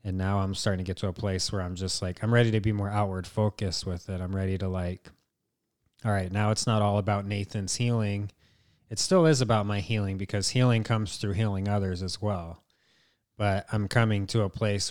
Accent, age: American, 30-49